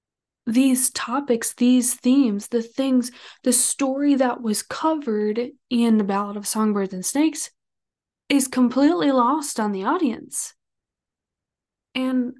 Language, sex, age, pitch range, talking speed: English, female, 20-39, 215-270 Hz, 120 wpm